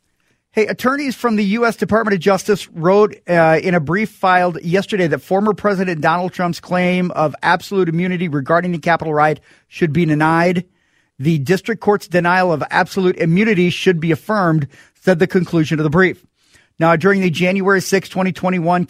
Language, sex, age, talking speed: English, male, 40-59, 165 wpm